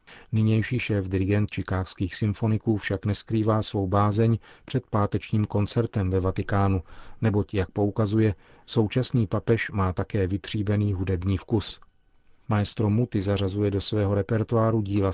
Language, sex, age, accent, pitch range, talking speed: Czech, male, 40-59, native, 100-110 Hz, 125 wpm